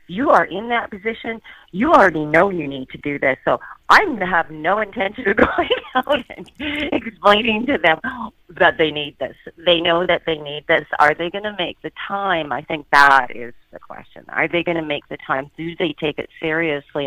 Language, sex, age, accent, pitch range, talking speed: English, female, 40-59, American, 135-175 Hz, 210 wpm